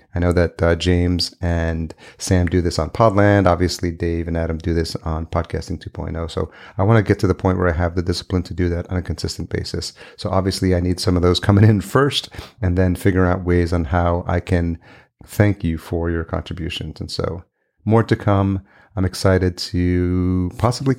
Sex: male